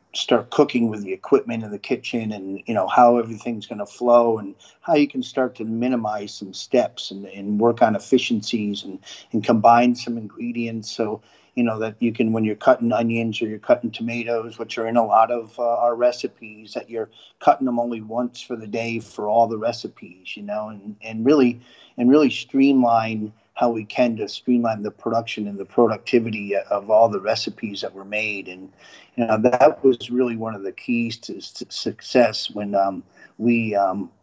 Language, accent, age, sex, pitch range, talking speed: English, American, 50-69, male, 105-120 Hz, 200 wpm